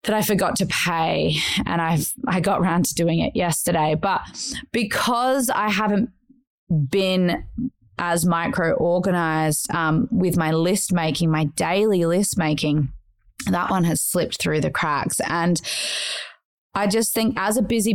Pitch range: 165-210 Hz